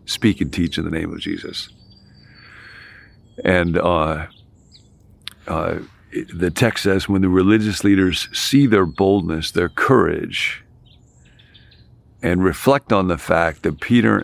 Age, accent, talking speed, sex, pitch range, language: 50-69, American, 125 wpm, male, 85-105 Hz, English